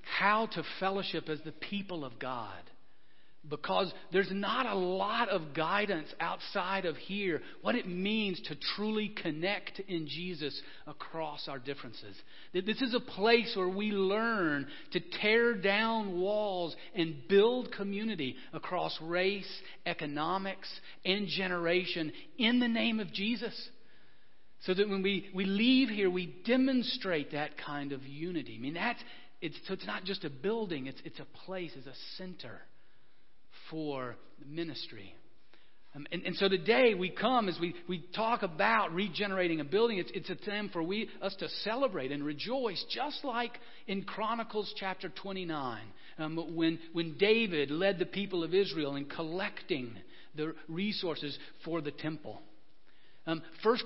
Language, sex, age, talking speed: English, male, 50-69, 150 wpm